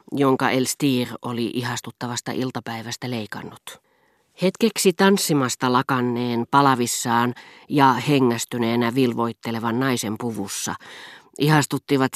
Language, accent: Finnish, native